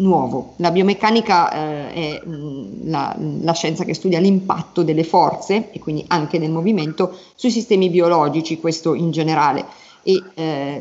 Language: Italian